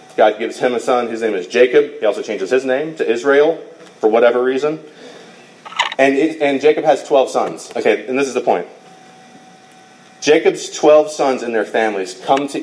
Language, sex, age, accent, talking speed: English, male, 30-49, American, 185 wpm